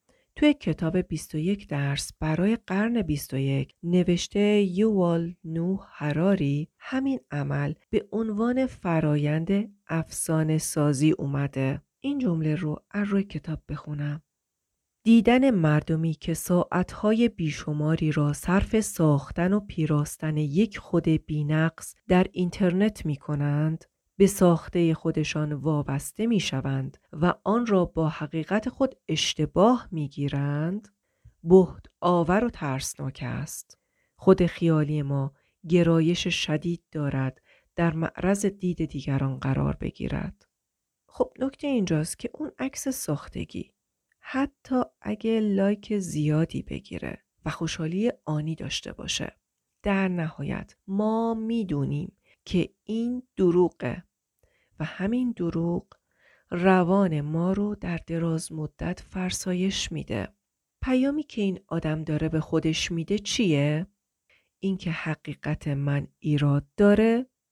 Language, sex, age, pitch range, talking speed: Persian, female, 30-49, 150-200 Hz, 110 wpm